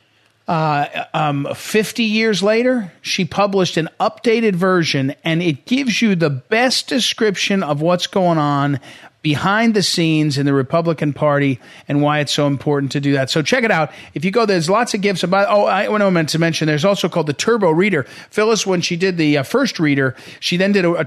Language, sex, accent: English, male, American